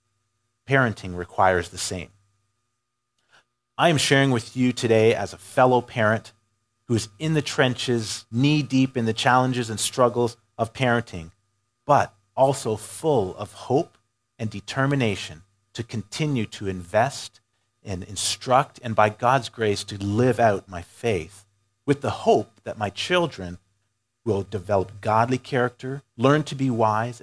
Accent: American